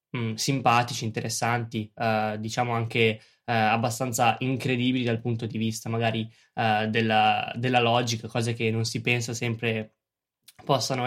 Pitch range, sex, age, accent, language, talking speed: 115-130 Hz, male, 10-29, native, Italian, 130 wpm